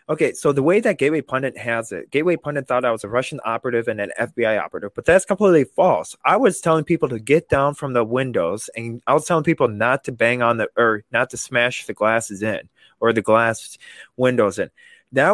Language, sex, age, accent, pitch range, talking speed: English, male, 20-39, American, 115-155 Hz, 225 wpm